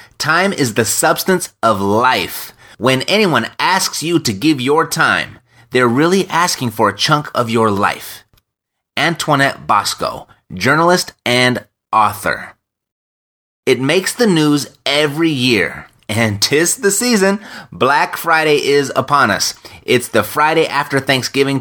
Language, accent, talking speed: English, American, 135 wpm